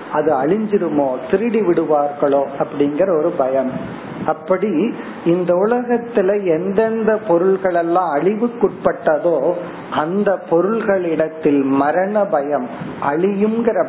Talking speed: 80 wpm